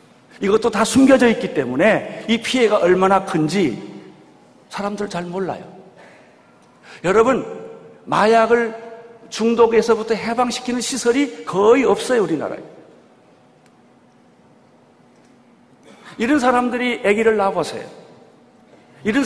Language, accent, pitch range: Korean, native, 185-235 Hz